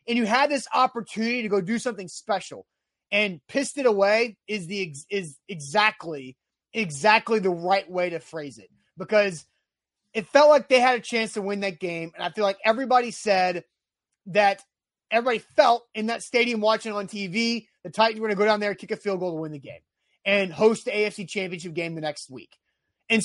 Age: 30-49